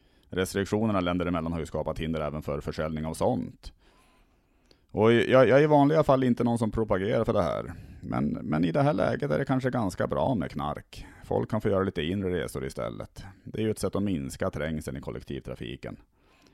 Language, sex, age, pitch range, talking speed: Swedish, male, 30-49, 80-110 Hz, 205 wpm